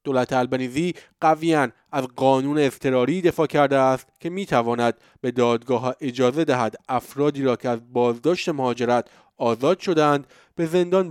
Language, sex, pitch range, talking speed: Persian, male, 130-160 Hz, 140 wpm